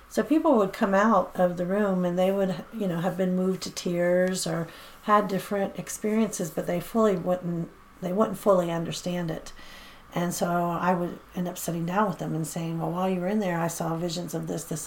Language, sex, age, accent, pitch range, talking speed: English, female, 40-59, American, 175-200 Hz, 220 wpm